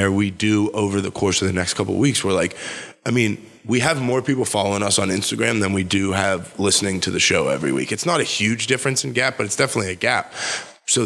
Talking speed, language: 250 wpm, English